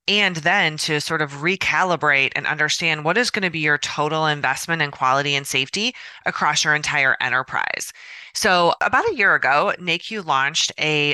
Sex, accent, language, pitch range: female, American, English, 145-175 Hz